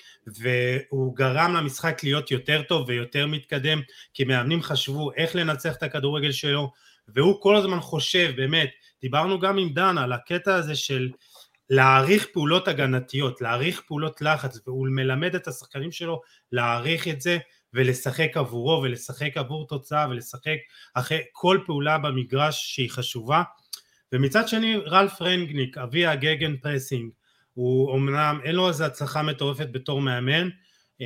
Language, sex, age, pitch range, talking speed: Hebrew, male, 30-49, 125-155 Hz, 135 wpm